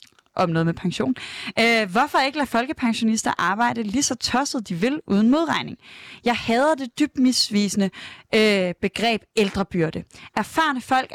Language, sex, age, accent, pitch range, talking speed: Danish, female, 20-39, native, 200-260 Hz, 145 wpm